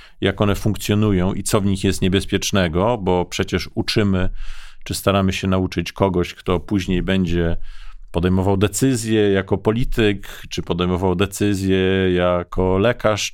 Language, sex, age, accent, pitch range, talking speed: Polish, male, 40-59, native, 90-105 Hz, 130 wpm